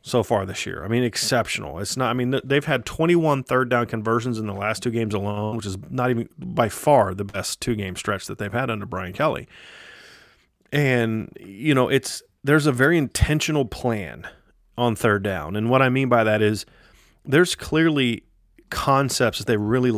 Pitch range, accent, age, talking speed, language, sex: 105-130 Hz, American, 30-49, 195 wpm, English, male